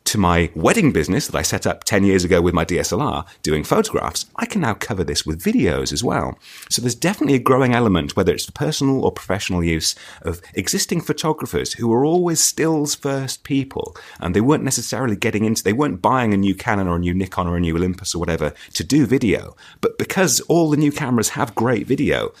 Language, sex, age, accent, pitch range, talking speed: English, male, 30-49, British, 95-135 Hz, 215 wpm